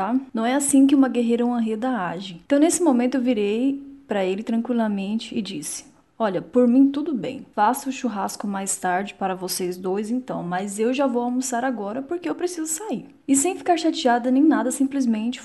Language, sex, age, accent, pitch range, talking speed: Portuguese, female, 10-29, Brazilian, 215-275 Hz, 200 wpm